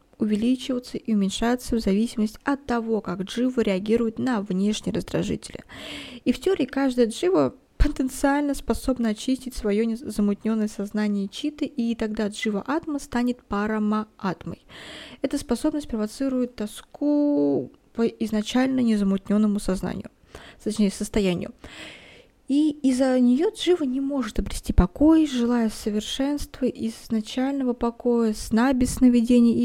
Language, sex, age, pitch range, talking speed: Russian, female, 20-39, 210-265 Hz, 115 wpm